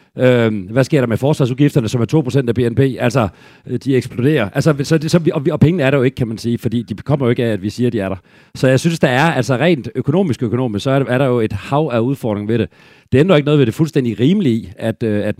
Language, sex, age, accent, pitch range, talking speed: Danish, male, 40-59, native, 105-135 Hz, 260 wpm